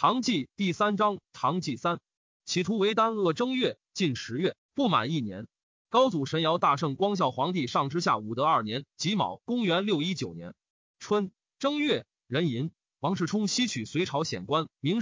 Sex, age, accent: male, 30-49, native